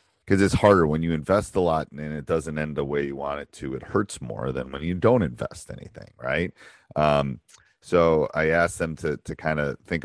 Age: 40-59